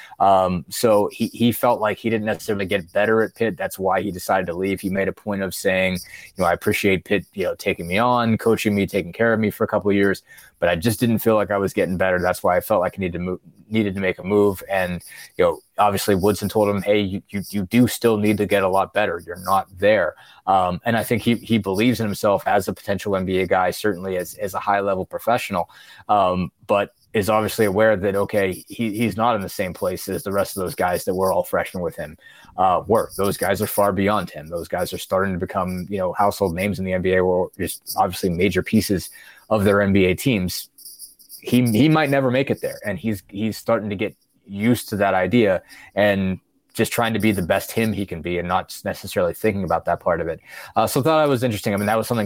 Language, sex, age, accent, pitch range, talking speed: English, male, 20-39, American, 95-110 Hz, 250 wpm